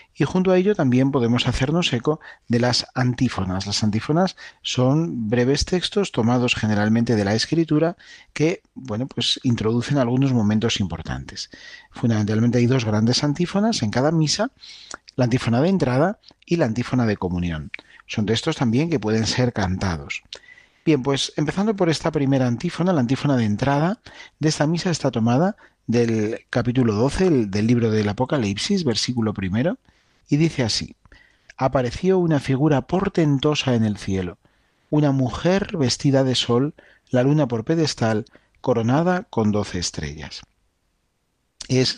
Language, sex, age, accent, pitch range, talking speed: Spanish, male, 40-59, Spanish, 110-150 Hz, 140 wpm